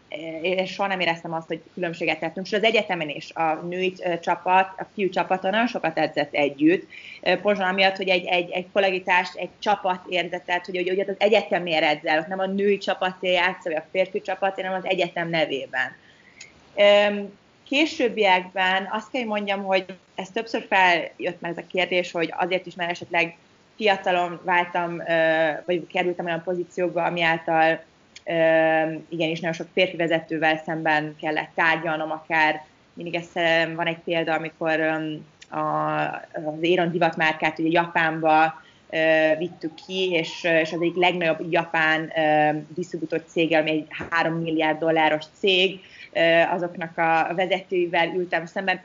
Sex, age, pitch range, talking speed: female, 30-49, 160-190 Hz, 145 wpm